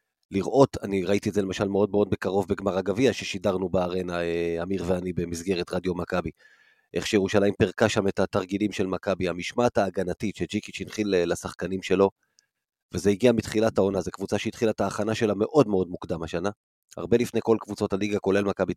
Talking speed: 170 wpm